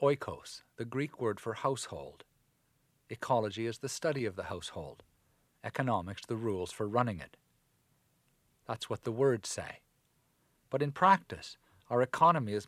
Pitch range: 110-140 Hz